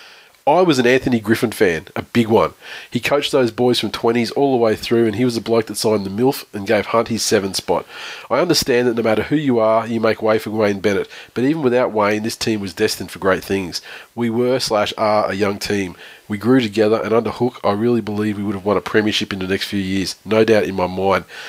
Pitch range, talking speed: 110-125 Hz, 255 wpm